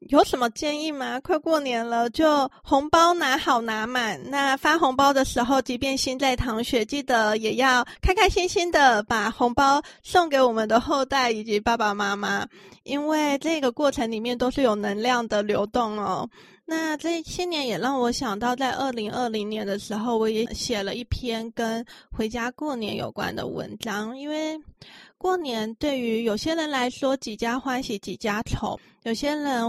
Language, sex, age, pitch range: Chinese, female, 20-39, 225-270 Hz